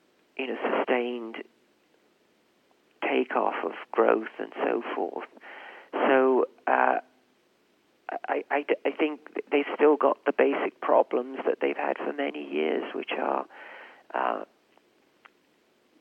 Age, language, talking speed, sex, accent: 50-69, English, 110 wpm, male, British